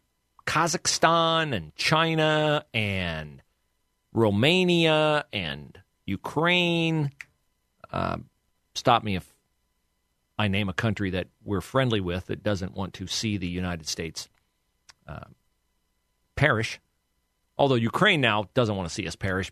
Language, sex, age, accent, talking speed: English, male, 40-59, American, 115 wpm